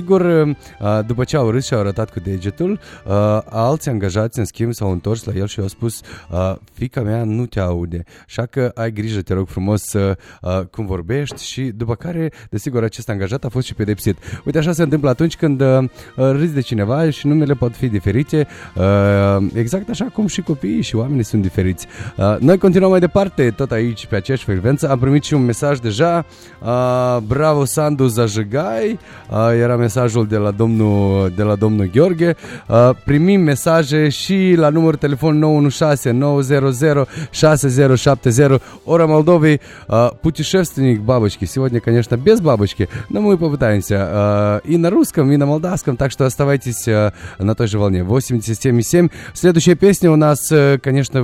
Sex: male